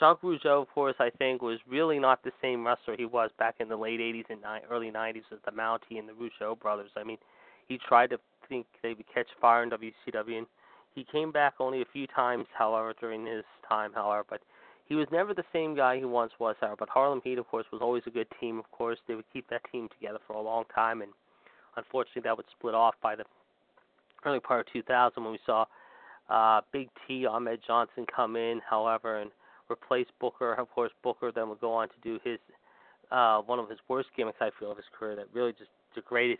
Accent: American